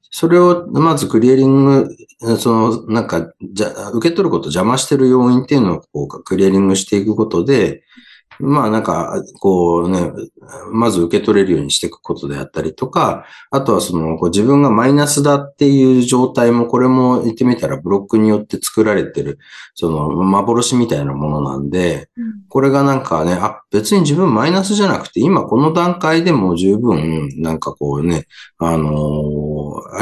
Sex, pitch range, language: male, 85-135 Hz, Japanese